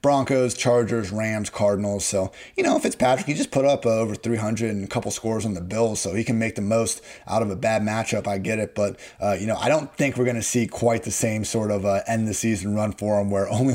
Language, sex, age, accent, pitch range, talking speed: English, male, 30-49, American, 105-120 Hz, 255 wpm